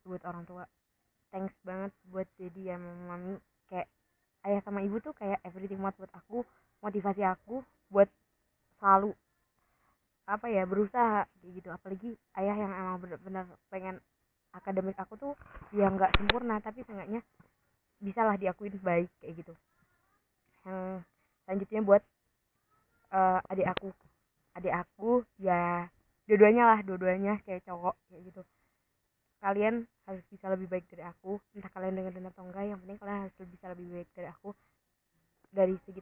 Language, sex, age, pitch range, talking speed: Indonesian, female, 20-39, 185-205 Hz, 145 wpm